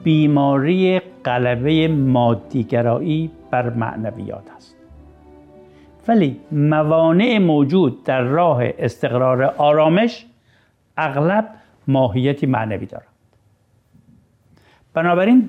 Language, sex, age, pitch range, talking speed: Persian, male, 60-79, 120-165 Hz, 70 wpm